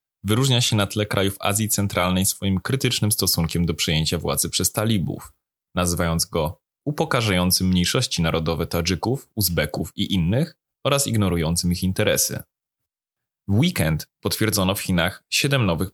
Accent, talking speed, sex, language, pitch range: native, 130 wpm, male, Polish, 95-120 Hz